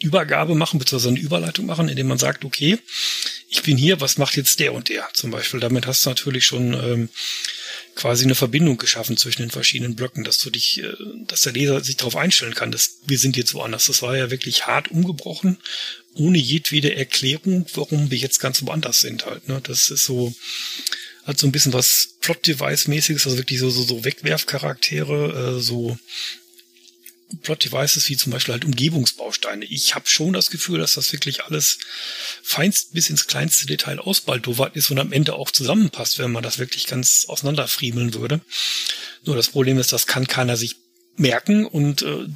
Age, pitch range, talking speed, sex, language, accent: 30-49, 125-155 Hz, 185 wpm, male, German, German